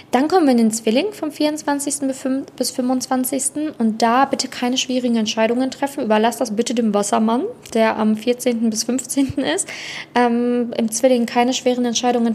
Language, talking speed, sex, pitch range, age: German, 165 wpm, female, 215-260 Hz, 20-39